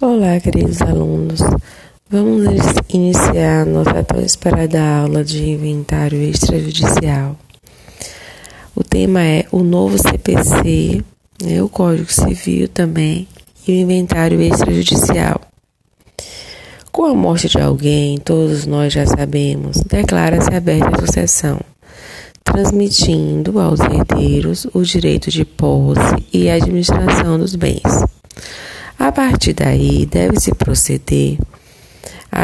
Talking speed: 105 wpm